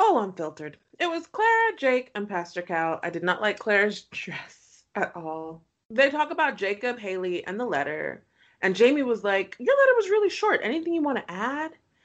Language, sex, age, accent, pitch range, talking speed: English, female, 20-39, American, 180-260 Hz, 195 wpm